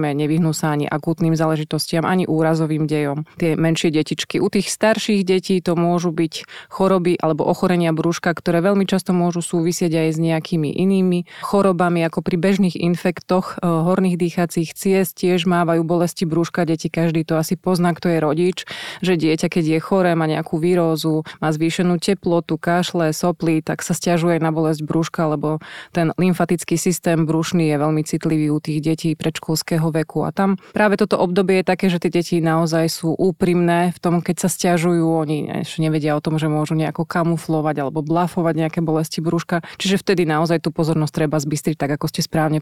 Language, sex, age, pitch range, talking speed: Slovak, female, 20-39, 155-175 Hz, 175 wpm